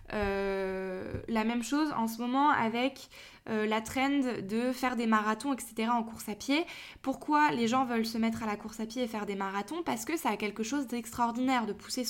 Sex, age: female, 20-39